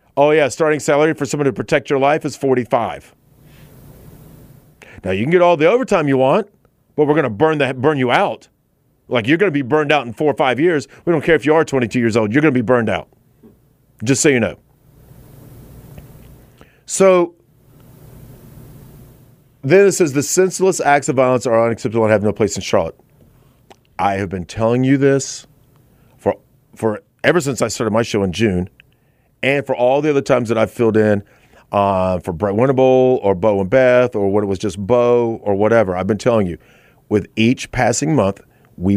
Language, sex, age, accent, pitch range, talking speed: English, male, 40-59, American, 110-145 Hz, 200 wpm